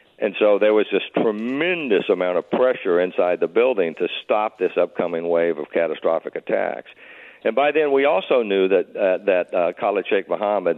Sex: male